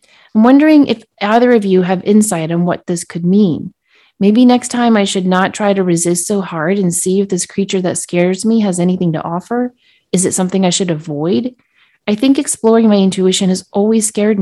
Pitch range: 175-215 Hz